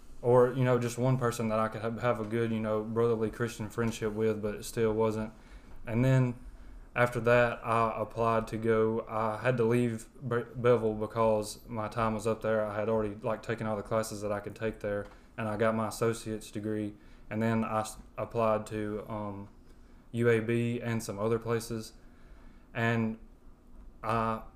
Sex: male